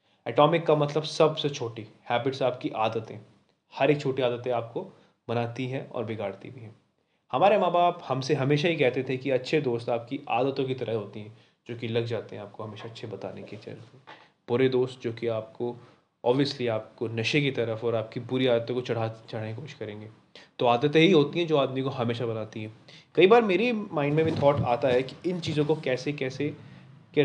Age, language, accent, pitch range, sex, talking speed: 20-39, Hindi, native, 120-150 Hz, male, 210 wpm